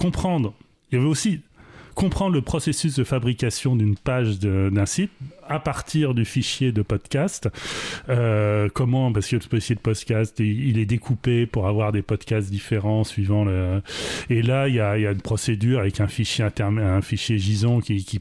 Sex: male